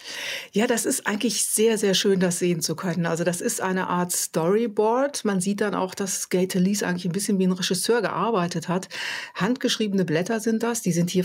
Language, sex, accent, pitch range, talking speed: German, female, German, 180-210 Hz, 210 wpm